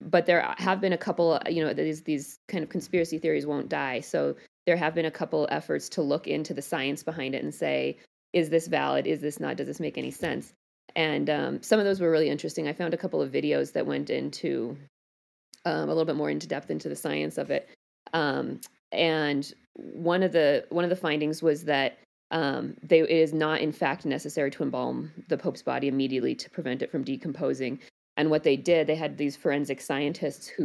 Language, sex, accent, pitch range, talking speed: English, female, American, 130-160 Hz, 220 wpm